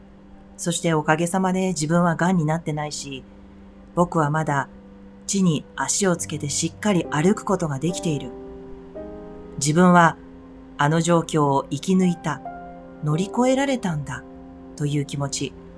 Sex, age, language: female, 40-59, Japanese